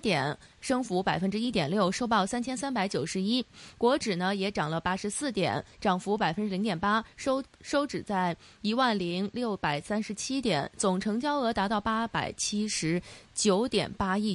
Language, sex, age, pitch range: Chinese, female, 20-39, 185-240 Hz